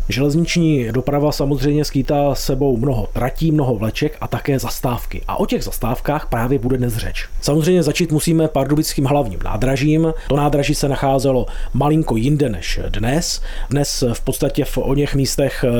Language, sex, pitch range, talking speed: Czech, male, 125-155 Hz, 150 wpm